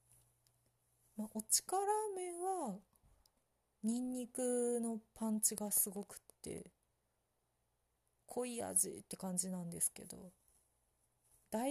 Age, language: 30-49, Japanese